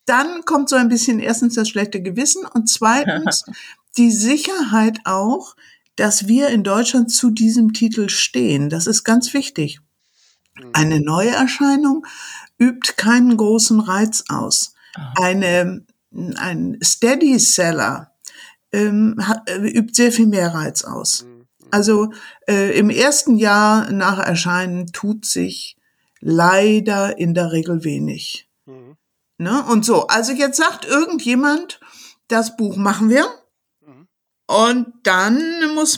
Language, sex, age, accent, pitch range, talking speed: German, female, 60-79, German, 185-235 Hz, 120 wpm